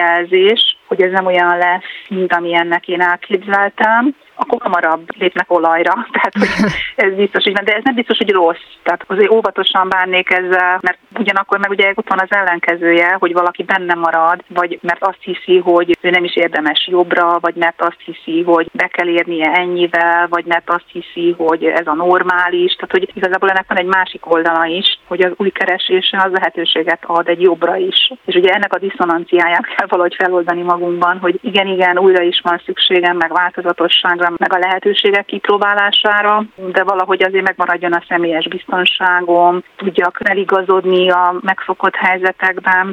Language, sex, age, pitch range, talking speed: Hungarian, female, 30-49, 175-190 Hz, 170 wpm